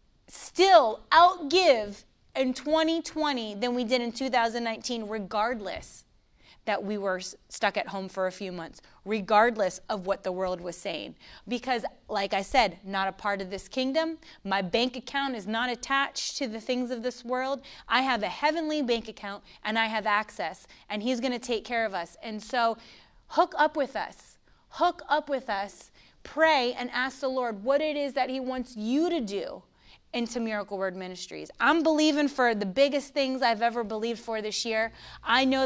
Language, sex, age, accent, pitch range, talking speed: English, female, 30-49, American, 210-260 Hz, 185 wpm